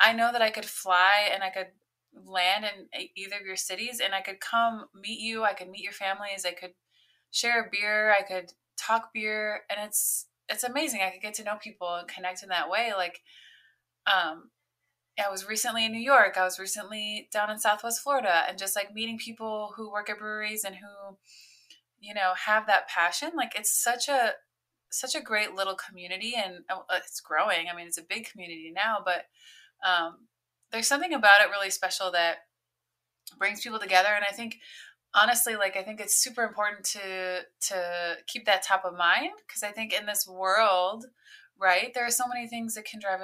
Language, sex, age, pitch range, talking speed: English, female, 20-39, 185-230 Hz, 200 wpm